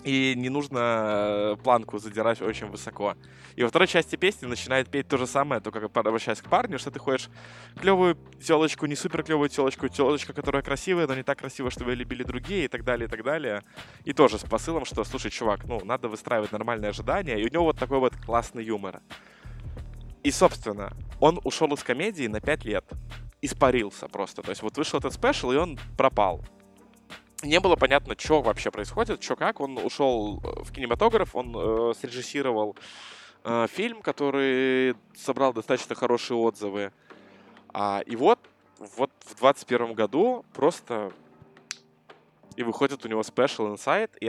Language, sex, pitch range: Russian, male, 110-140 Hz